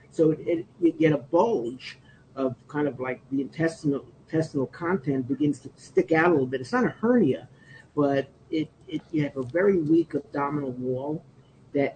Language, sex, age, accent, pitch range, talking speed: English, male, 50-69, American, 135-165 Hz, 185 wpm